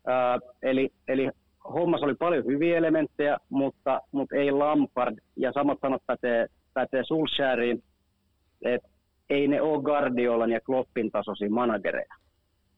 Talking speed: 115 wpm